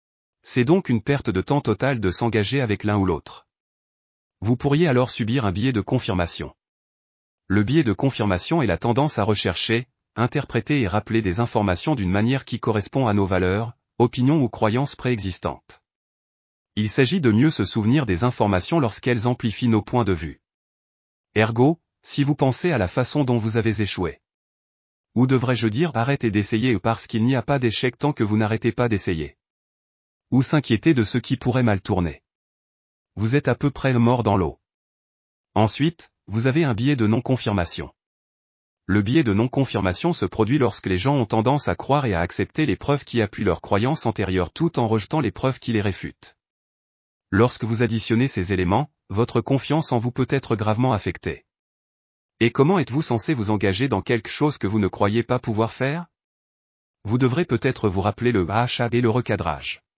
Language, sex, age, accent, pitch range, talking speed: French, male, 30-49, French, 100-130 Hz, 180 wpm